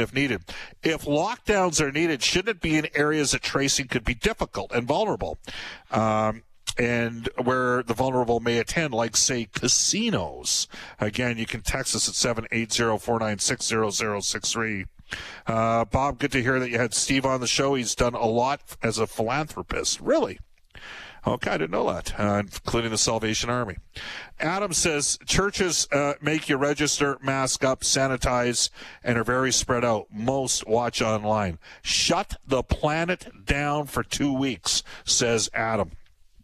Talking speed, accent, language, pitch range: 165 wpm, American, English, 115-140 Hz